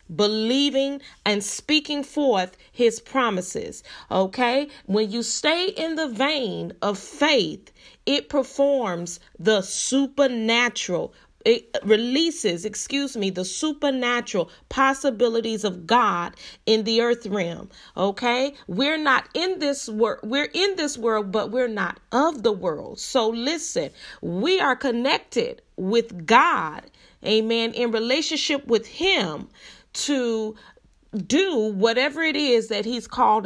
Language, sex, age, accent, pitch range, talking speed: English, female, 30-49, American, 205-270 Hz, 120 wpm